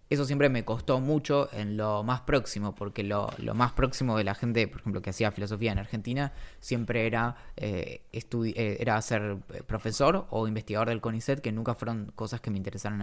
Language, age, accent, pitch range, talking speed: Spanish, 20-39, Argentinian, 105-130 Hz, 195 wpm